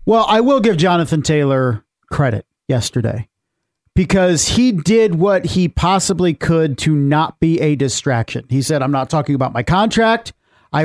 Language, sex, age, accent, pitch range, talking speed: English, male, 40-59, American, 140-180 Hz, 160 wpm